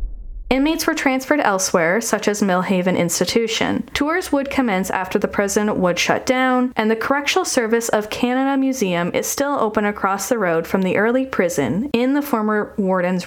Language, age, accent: English, 10-29, American